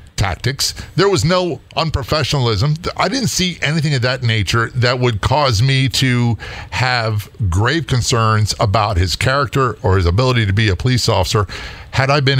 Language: English